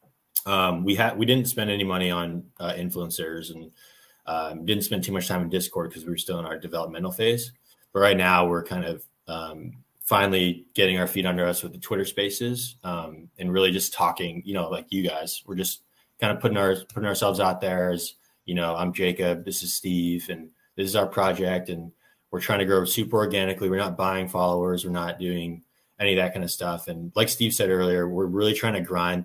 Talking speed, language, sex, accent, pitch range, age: 220 wpm, English, male, American, 90-100 Hz, 20-39